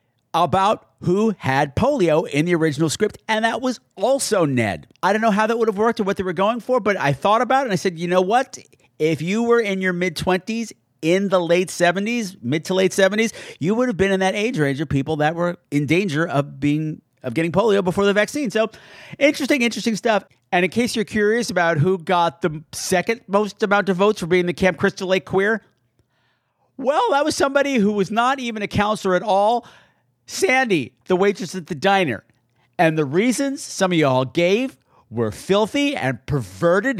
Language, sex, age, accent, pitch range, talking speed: English, male, 50-69, American, 150-210 Hz, 205 wpm